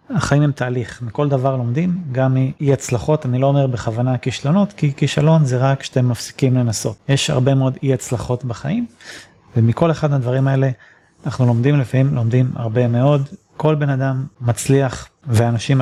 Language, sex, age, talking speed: Hebrew, male, 30-49, 160 wpm